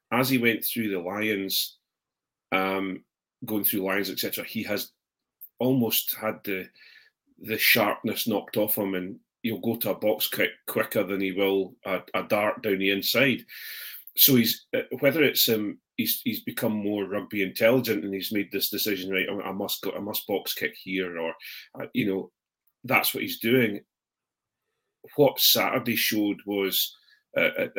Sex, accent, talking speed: male, British, 165 wpm